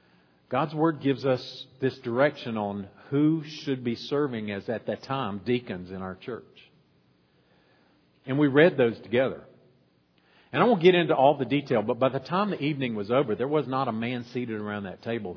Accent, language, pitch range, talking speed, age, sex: American, English, 110-160 Hz, 190 wpm, 50-69, male